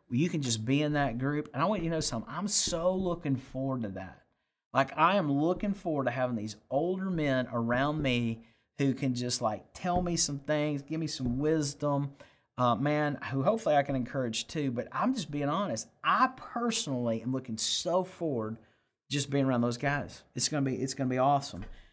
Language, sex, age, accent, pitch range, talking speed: English, male, 40-59, American, 130-170 Hz, 200 wpm